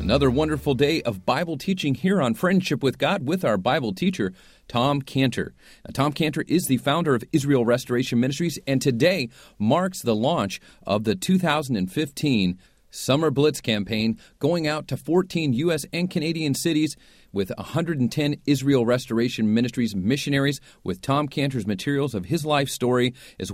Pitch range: 115-150 Hz